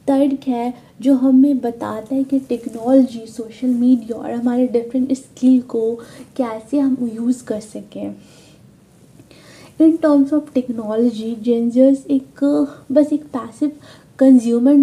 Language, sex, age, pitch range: Hindi, female, 20-39, 235-265 Hz